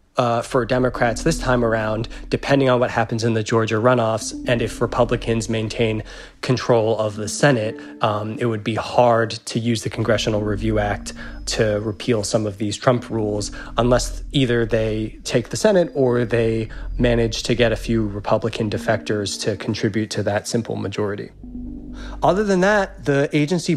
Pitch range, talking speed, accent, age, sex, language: 110-130 Hz, 165 wpm, American, 20-39, male, English